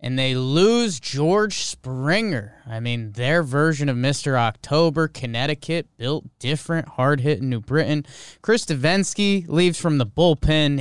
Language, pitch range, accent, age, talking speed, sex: English, 120-165 Hz, American, 20-39, 140 wpm, male